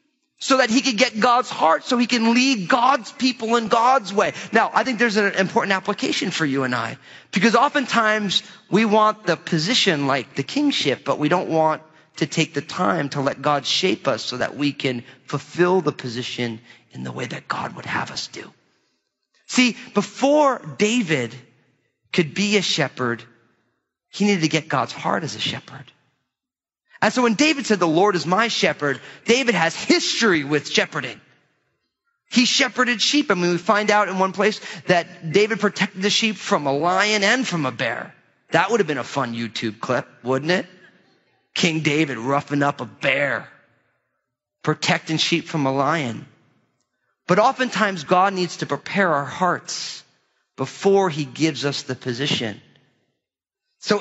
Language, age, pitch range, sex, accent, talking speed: English, 30-49, 140-220 Hz, male, American, 170 wpm